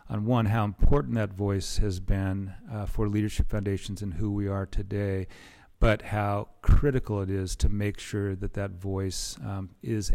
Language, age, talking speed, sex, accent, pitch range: English, 40-59, 180 wpm, male, American, 95-105 Hz